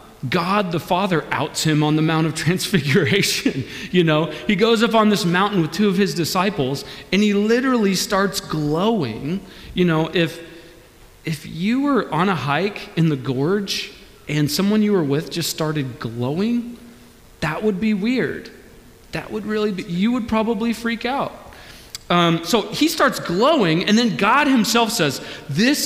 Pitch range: 150-215 Hz